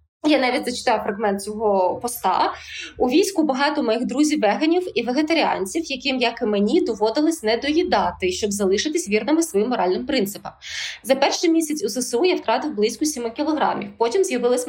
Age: 20-39